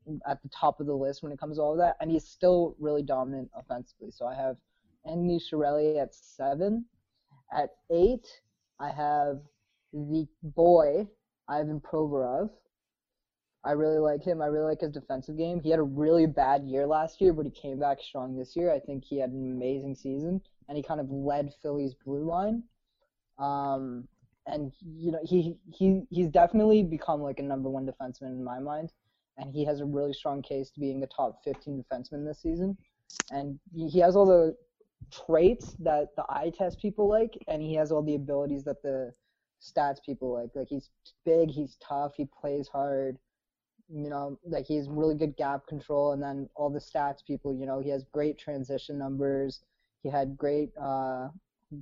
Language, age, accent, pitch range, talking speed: English, 20-39, American, 140-160 Hz, 190 wpm